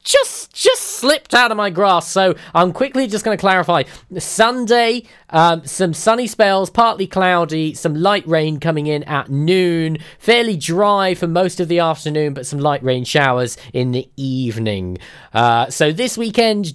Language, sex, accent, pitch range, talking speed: English, male, British, 130-195 Hz, 170 wpm